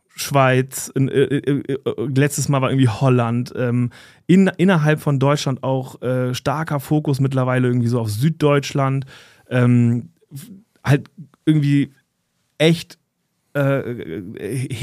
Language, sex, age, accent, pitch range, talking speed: German, male, 30-49, German, 120-145 Hz, 110 wpm